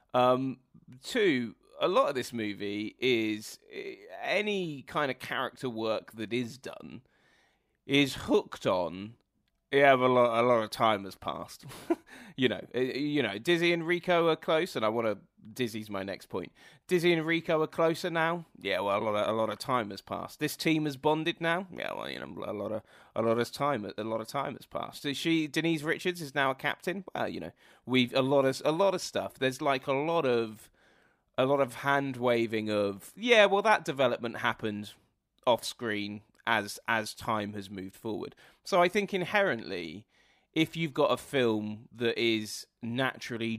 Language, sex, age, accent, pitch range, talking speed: English, male, 30-49, British, 105-150 Hz, 190 wpm